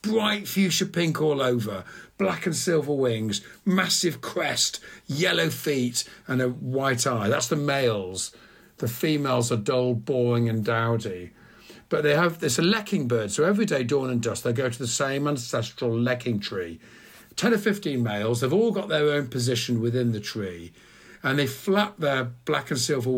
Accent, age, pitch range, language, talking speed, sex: British, 50-69, 115-175 Hz, English, 175 wpm, male